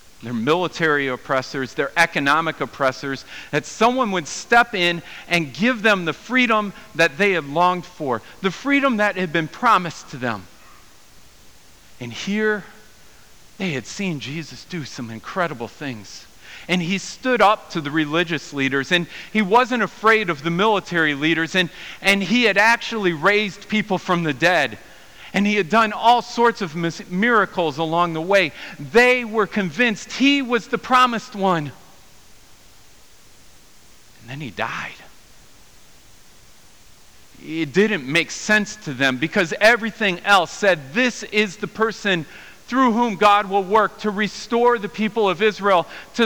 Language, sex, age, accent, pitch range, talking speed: English, male, 50-69, American, 160-220 Hz, 150 wpm